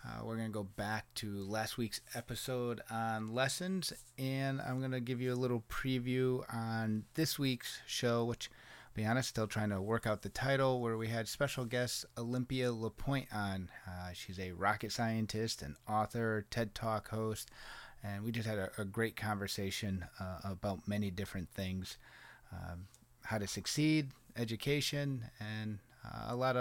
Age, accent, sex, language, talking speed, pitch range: 30-49, American, male, English, 165 wpm, 110-130 Hz